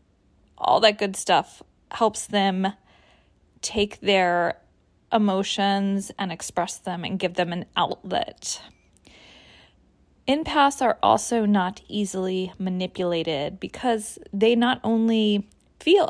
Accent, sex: American, female